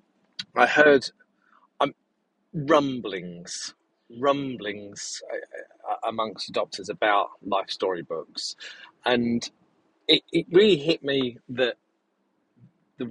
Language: English